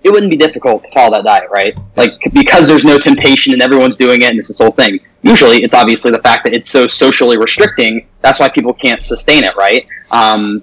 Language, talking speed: English, 230 wpm